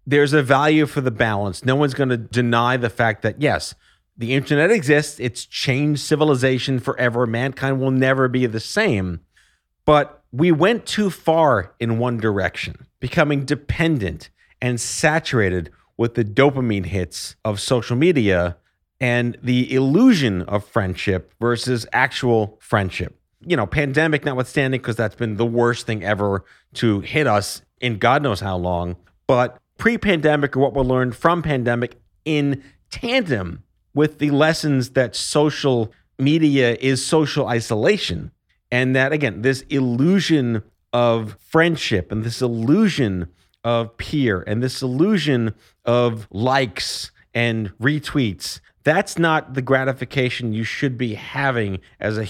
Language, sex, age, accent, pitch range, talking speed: English, male, 30-49, American, 110-145 Hz, 140 wpm